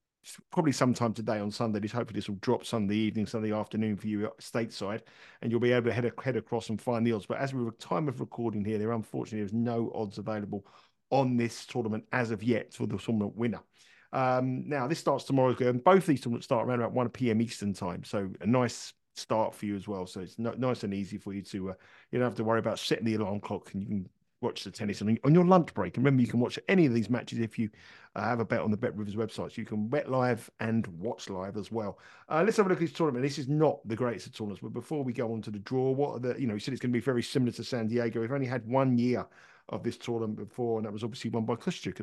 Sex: male